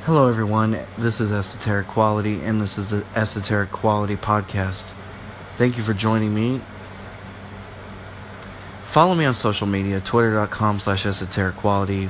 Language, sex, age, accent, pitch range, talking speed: English, male, 30-49, American, 95-110 Hz, 135 wpm